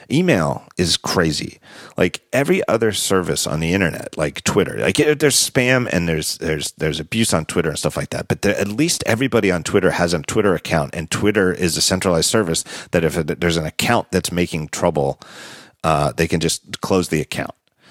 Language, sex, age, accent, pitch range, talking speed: English, male, 40-59, American, 85-125 Hz, 195 wpm